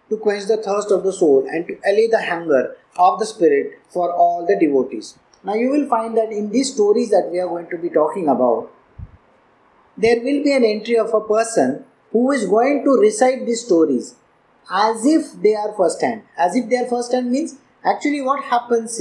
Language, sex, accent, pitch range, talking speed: English, male, Indian, 215-255 Hz, 210 wpm